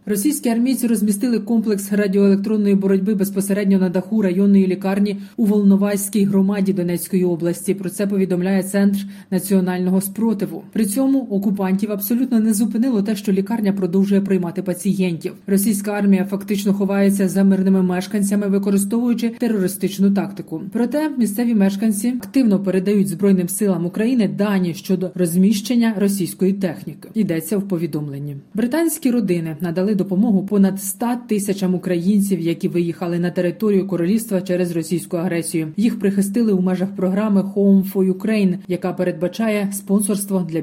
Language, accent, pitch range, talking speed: Ukrainian, native, 185-215 Hz, 130 wpm